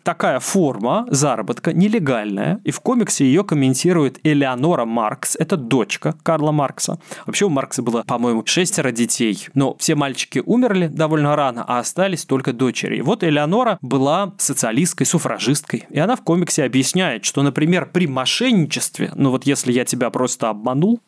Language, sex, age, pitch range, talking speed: Russian, male, 20-39, 130-180 Hz, 150 wpm